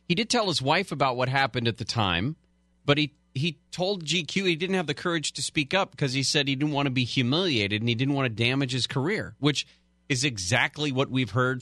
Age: 40-59